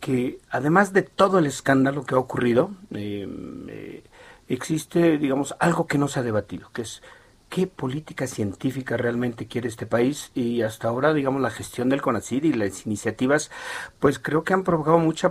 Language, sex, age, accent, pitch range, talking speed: Spanish, male, 50-69, Mexican, 115-170 Hz, 175 wpm